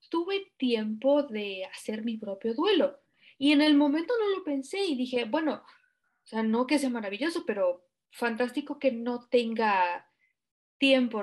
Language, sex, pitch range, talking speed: Spanish, female, 225-285 Hz, 155 wpm